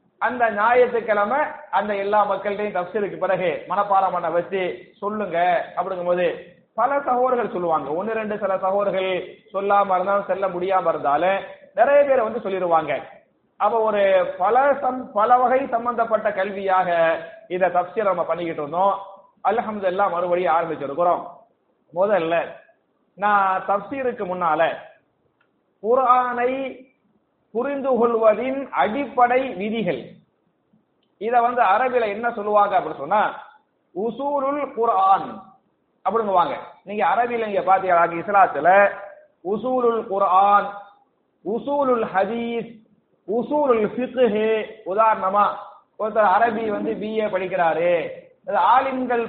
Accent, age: native, 30-49